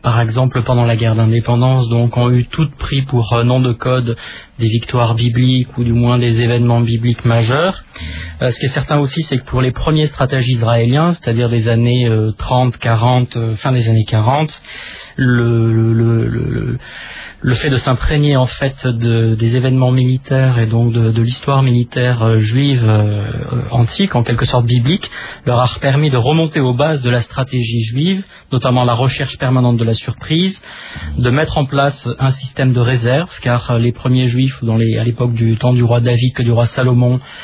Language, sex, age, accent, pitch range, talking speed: French, male, 30-49, French, 120-130 Hz, 195 wpm